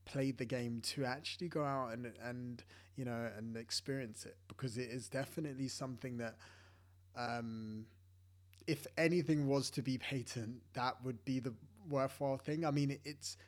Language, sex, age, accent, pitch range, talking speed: English, male, 20-39, British, 105-135 Hz, 160 wpm